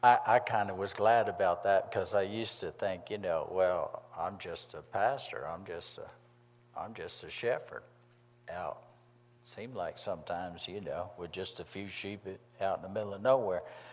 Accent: American